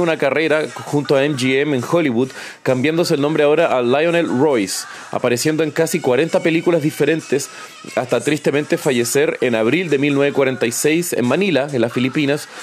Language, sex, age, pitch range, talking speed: Spanish, male, 30-49, 125-160 Hz, 150 wpm